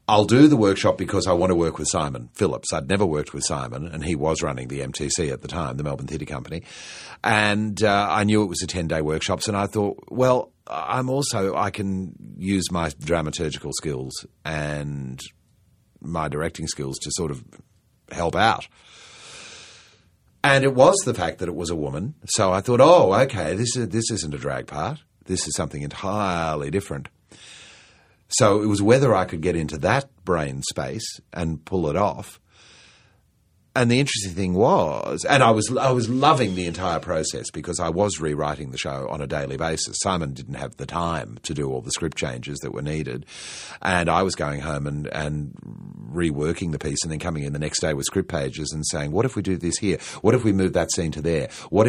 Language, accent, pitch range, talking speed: English, Australian, 75-105 Hz, 205 wpm